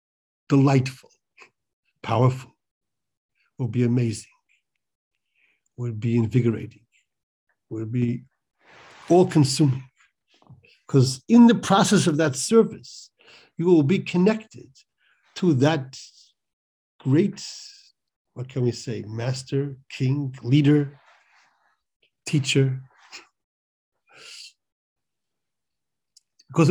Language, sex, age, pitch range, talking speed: English, male, 60-79, 130-175 Hz, 75 wpm